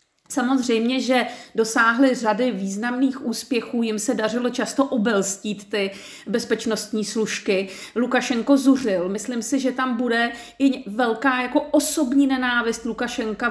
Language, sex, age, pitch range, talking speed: Czech, female, 40-59, 220-270 Hz, 115 wpm